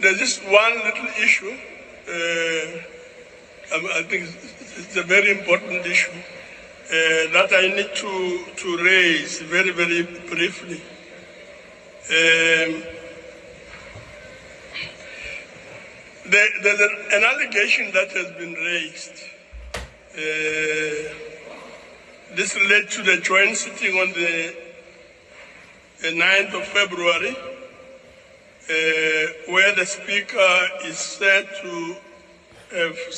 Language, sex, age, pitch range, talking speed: English, male, 60-79, 165-200 Hz, 95 wpm